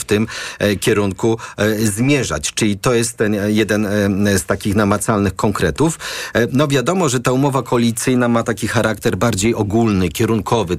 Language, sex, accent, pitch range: Polish, male, native, 100-115 Hz